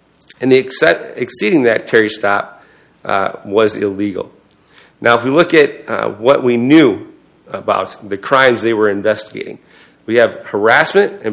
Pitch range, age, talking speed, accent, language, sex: 105-135 Hz, 40-59, 150 wpm, American, English, male